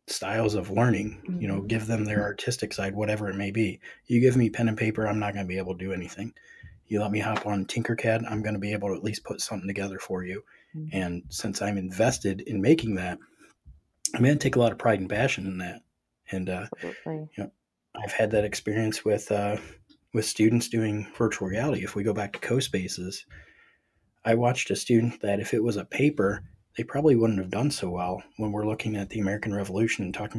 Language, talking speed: English, 225 wpm